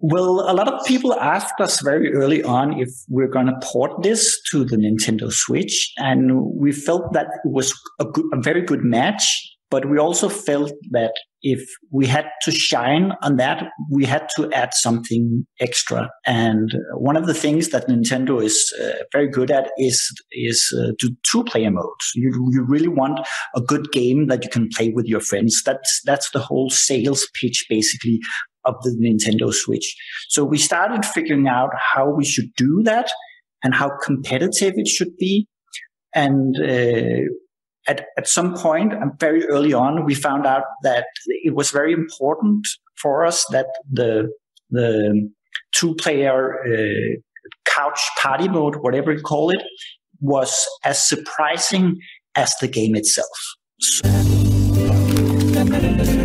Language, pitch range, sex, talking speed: English, 120-160 Hz, male, 160 wpm